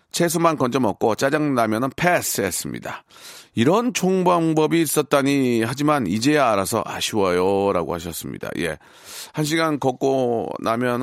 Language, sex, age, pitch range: Korean, male, 40-59, 110-150 Hz